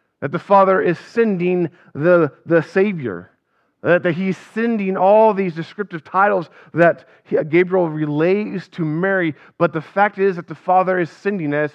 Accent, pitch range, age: American, 165-205 Hz, 40-59